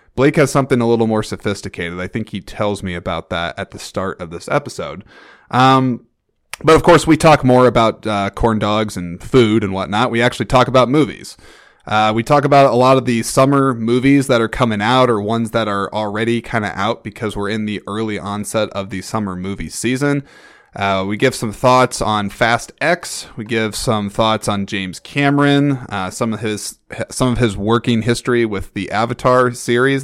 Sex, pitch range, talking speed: male, 105-130 Hz, 200 wpm